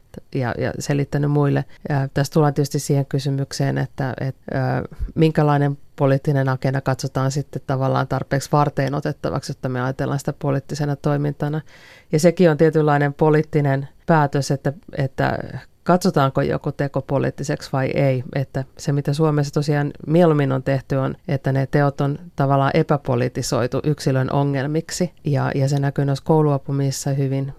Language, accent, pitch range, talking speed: Finnish, native, 135-150 Hz, 140 wpm